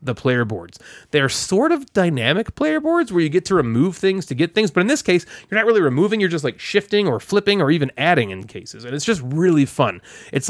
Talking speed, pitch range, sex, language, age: 245 wpm, 135-190 Hz, male, English, 30-49